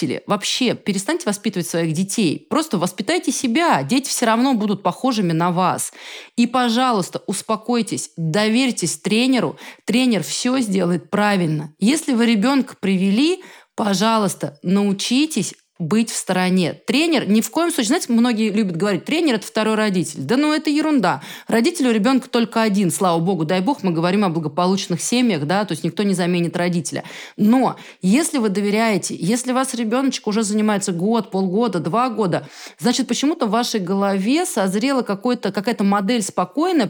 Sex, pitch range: female, 185-245 Hz